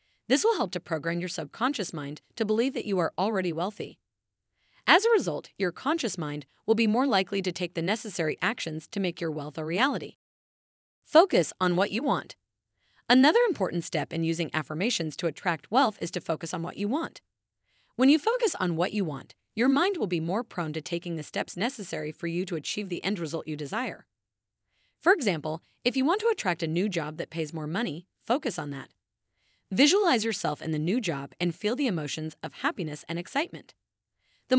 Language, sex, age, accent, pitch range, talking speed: English, female, 30-49, American, 160-230 Hz, 200 wpm